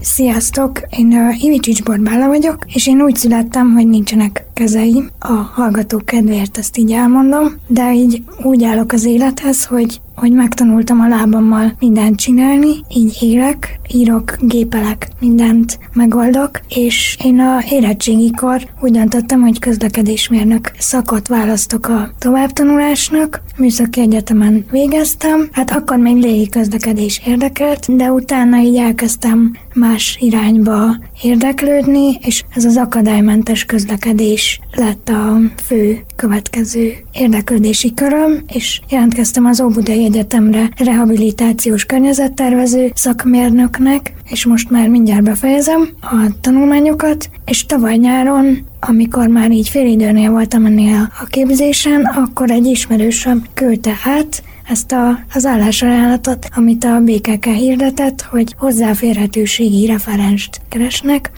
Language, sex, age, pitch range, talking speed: Hungarian, female, 20-39, 225-260 Hz, 120 wpm